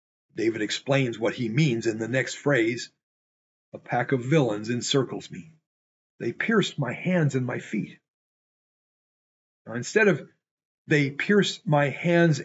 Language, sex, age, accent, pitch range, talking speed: English, male, 50-69, American, 130-170 Hz, 140 wpm